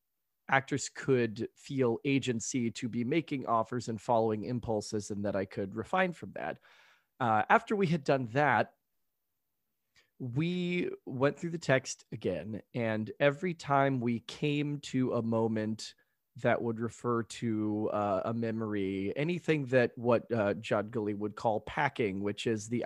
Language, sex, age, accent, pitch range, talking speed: English, male, 30-49, American, 110-140 Hz, 150 wpm